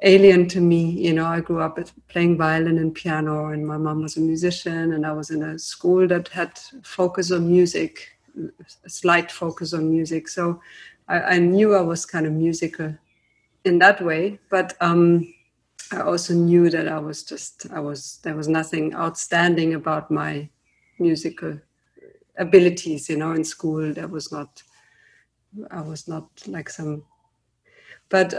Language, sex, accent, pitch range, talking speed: English, female, German, 160-185 Hz, 165 wpm